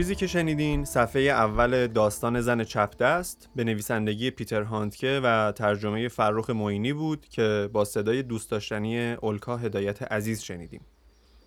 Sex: male